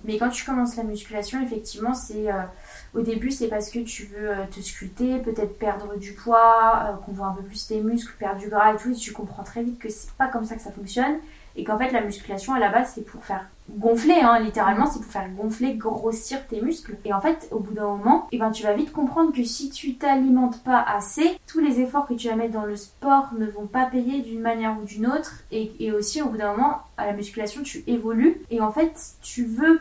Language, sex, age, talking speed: French, female, 20-39, 250 wpm